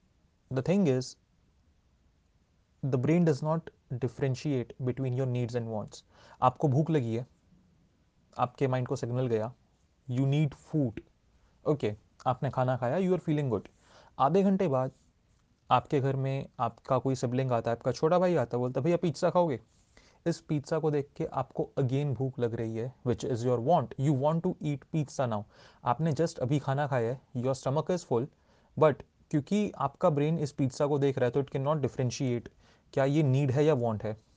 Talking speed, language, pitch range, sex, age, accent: 185 wpm, Hindi, 120-150 Hz, male, 30-49, native